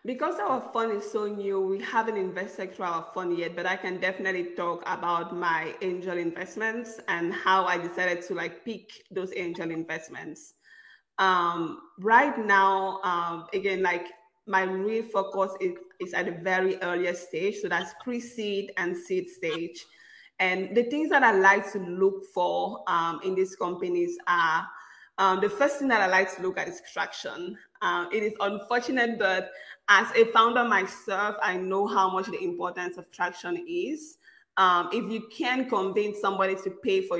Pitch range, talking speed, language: 185-235 Hz, 175 wpm, English